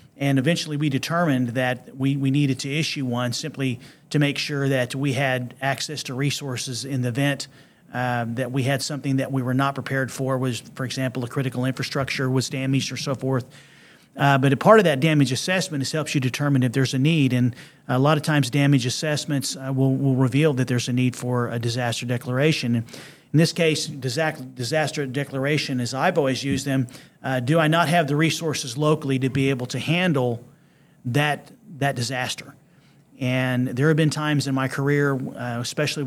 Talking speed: 195 wpm